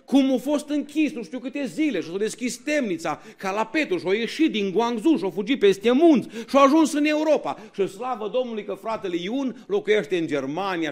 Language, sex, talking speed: Romanian, male, 185 wpm